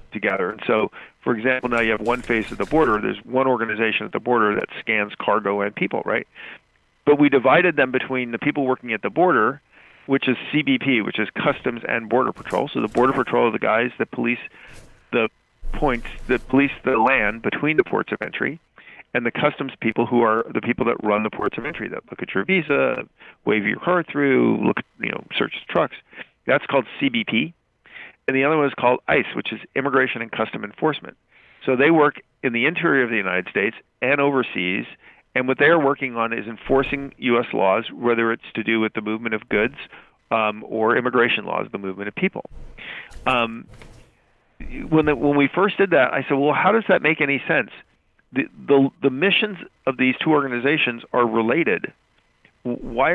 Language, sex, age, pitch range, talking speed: English, male, 40-59, 115-145 Hz, 200 wpm